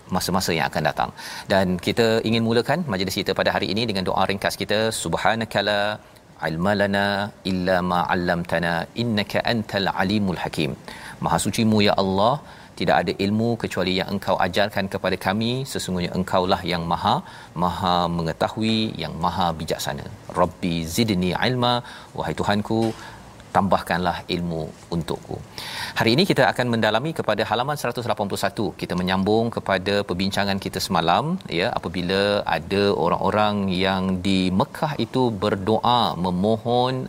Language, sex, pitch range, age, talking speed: Malayalam, male, 95-120 Hz, 40-59, 135 wpm